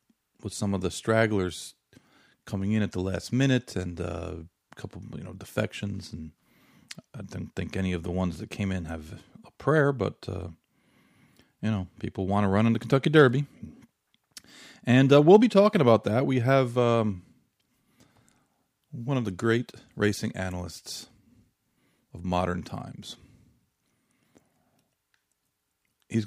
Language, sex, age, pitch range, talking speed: English, male, 40-59, 90-115 Hz, 145 wpm